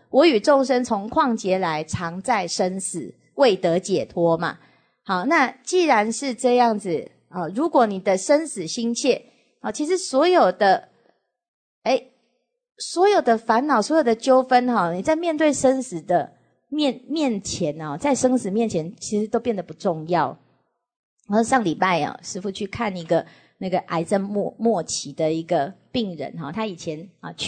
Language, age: English, 30-49